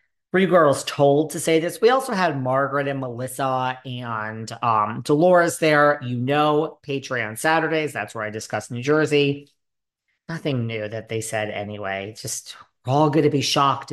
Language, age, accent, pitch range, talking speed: English, 40-59, American, 120-155 Hz, 170 wpm